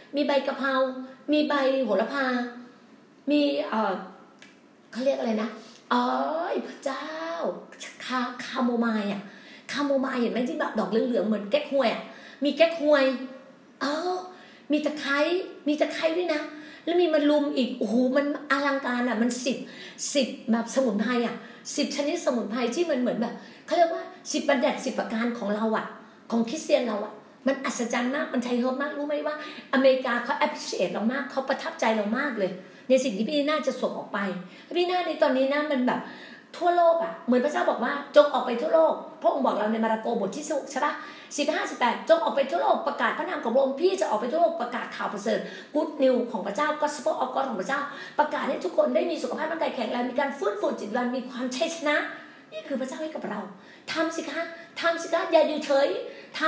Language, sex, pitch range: Thai, female, 245-305 Hz